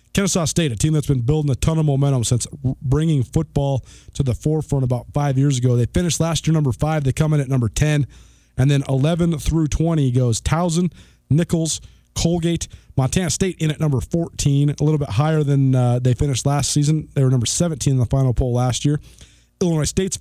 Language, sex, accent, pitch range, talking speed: English, male, American, 130-160 Hz, 210 wpm